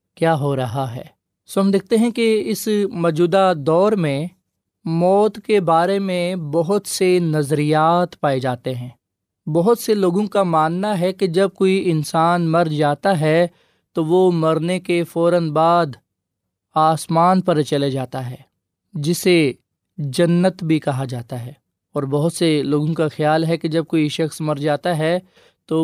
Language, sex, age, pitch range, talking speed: Urdu, male, 20-39, 145-175 Hz, 160 wpm